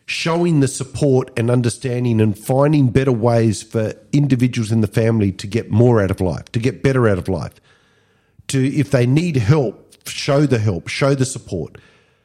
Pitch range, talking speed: 110-145 Hz, 180 wpm